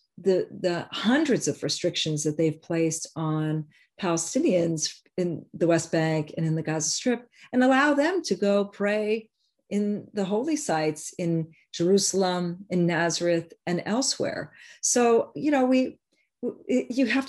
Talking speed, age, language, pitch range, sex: 150 wpm, 40-59, English, 155-195 Hz, female